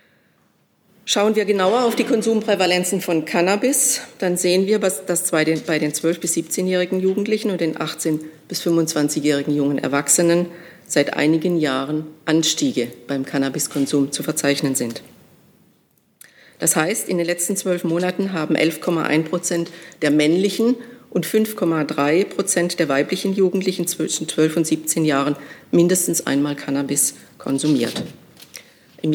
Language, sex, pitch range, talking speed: German, female, 155-185 Hz, 130 wpm